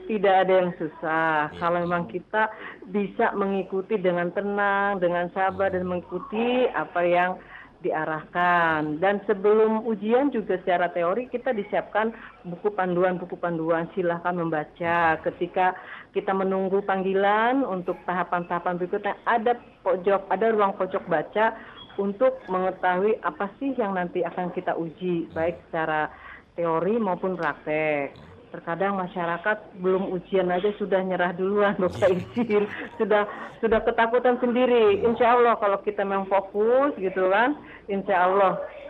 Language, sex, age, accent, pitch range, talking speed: Indonesian, female, 40-59, native, 175-215 Hz, 125 wpm